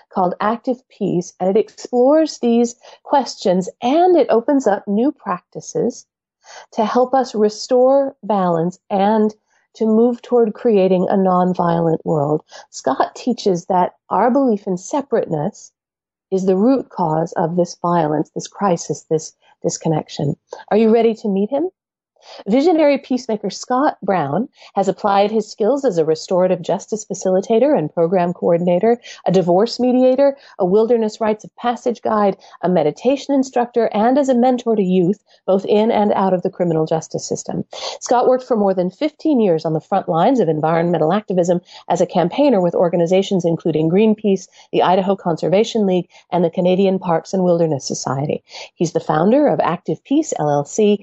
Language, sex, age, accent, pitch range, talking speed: English, female, 50-69, American, 175-240 Hz, 160 wpm